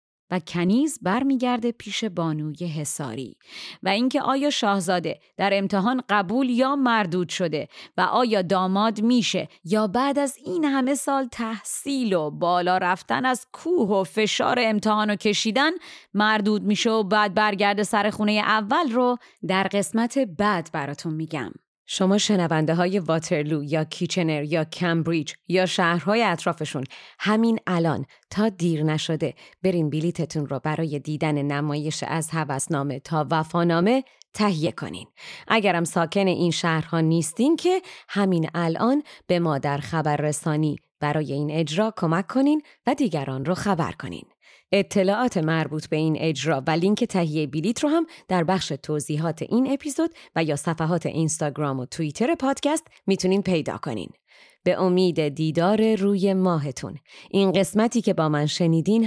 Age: 30-49